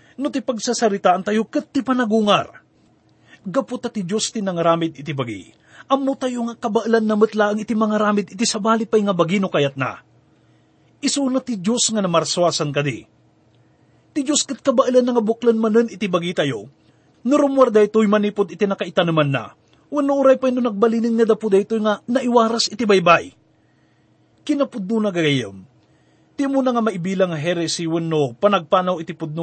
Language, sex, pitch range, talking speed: English, male, 175-235 Hz, 165 wpm